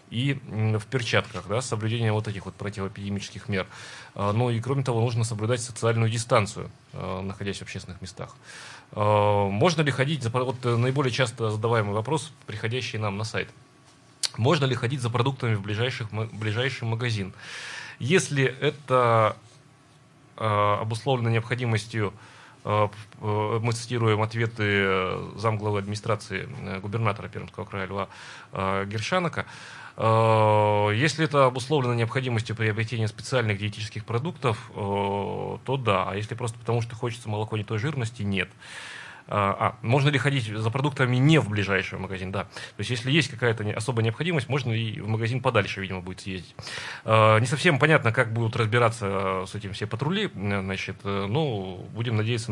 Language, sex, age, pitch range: Russian, male, 30-49, 100-125 Hz